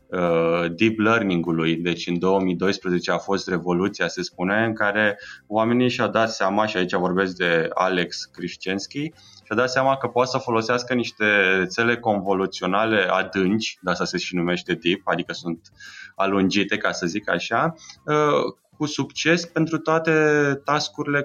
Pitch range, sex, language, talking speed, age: 95-140 Hz, male, Romanian, 145 wpm, 20-39